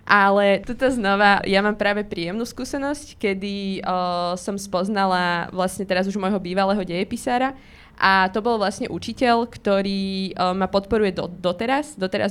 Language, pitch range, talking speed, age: Slovak, 185-210 Hz, 145 wpm, 20-39